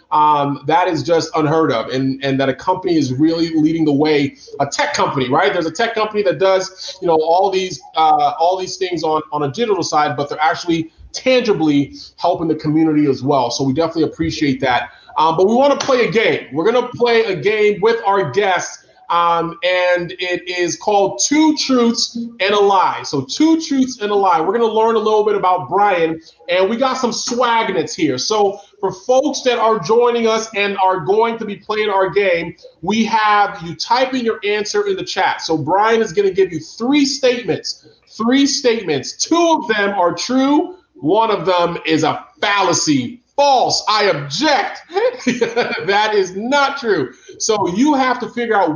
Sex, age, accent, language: male, 30-49, American, English